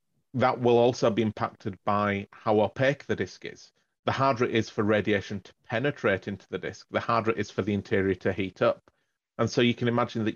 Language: English